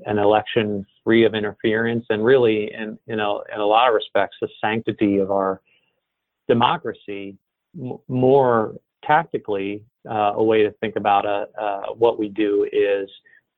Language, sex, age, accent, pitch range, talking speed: English, male, 40-59, American, 105-125 Hz, 155 wpm